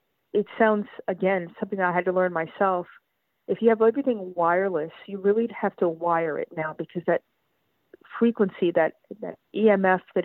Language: English